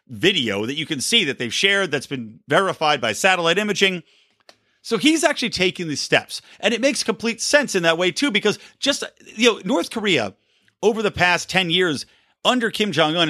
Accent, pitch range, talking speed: American, 140-210 Hz, 195 wpm